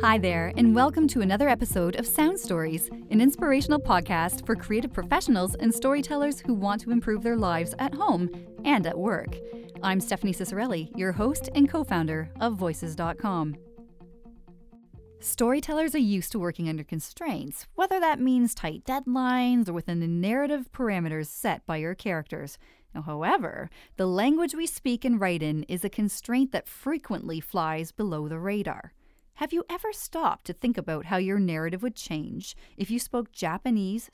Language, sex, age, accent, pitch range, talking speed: English, female, 30-49, American, 175-270 Hz, 160 wpm